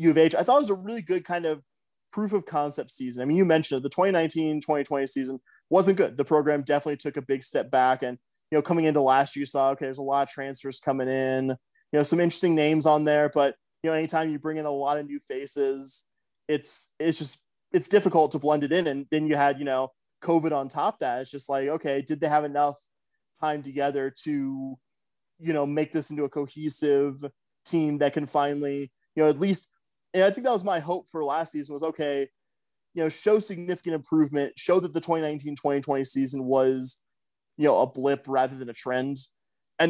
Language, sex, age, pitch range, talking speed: English, male, 20-39, 140-160 Hz, 225 wpm